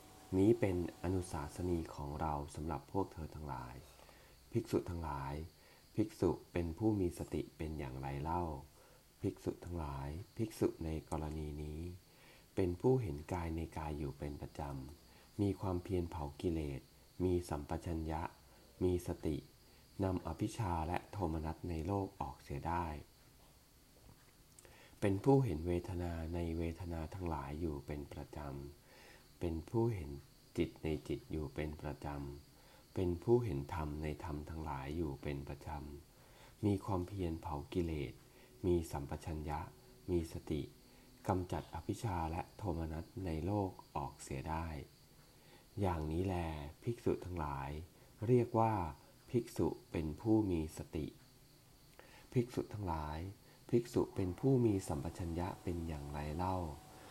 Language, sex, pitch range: English, male, 75-95 Hz